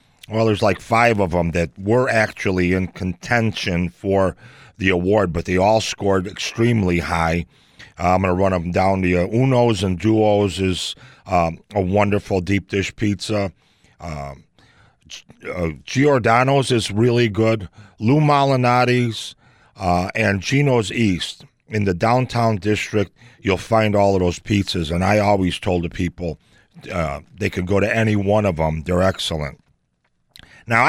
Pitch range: 90-120 Hz